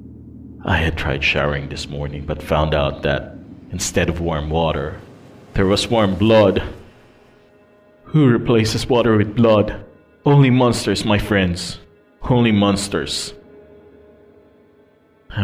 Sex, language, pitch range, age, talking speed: male, Filipino, 85-105 Hz, 30-49, 115 wpm